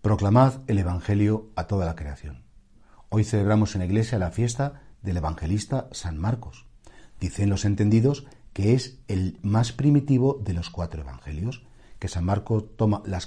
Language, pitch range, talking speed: Spanish, 90-120 Hz, 160 wpm